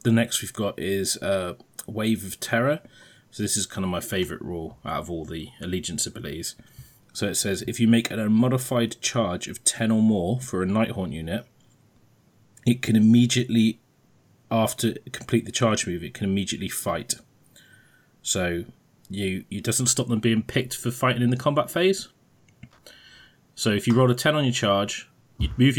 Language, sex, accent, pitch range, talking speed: English, male, British, 100-120 Hz, 185 wpm